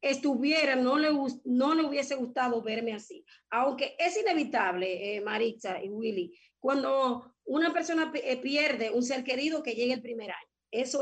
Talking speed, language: 165 wpm, Spanish